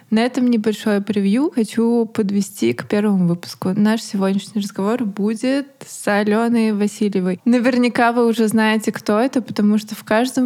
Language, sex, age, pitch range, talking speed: Russian, female, 20-39, 195-235 Hz, 150 wpm